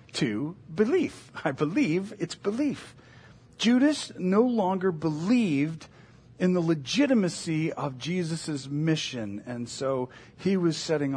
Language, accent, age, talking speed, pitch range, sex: English, American, 50-69, 115 wpm, 140-200 Hz, male